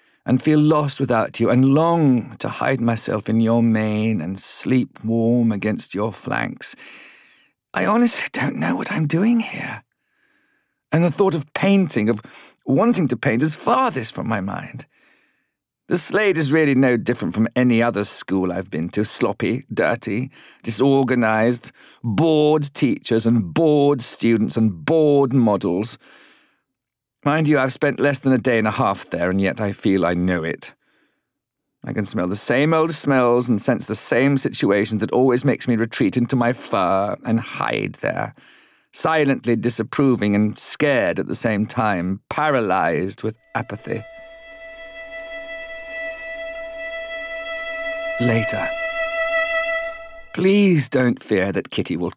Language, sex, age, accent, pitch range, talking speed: English, male, 40-59, British, 115-165 Hz, 145 wpm